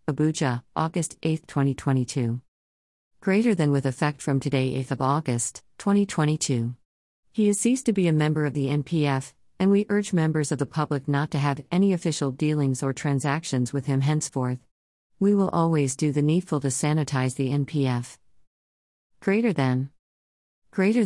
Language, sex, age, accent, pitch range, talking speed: English, female, 50-69, American, 130-160 Hz, 155 wpm